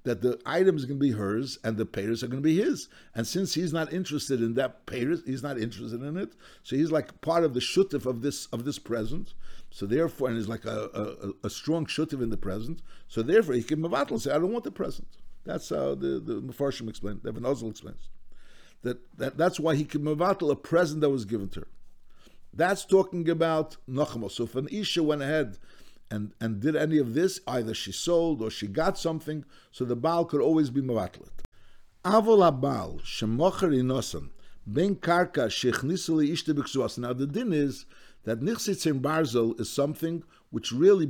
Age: 60-79